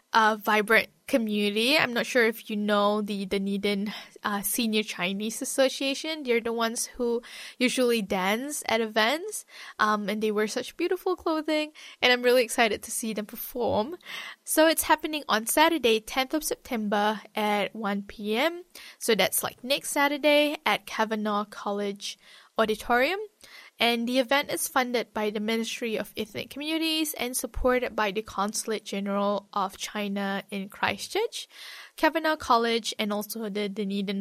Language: English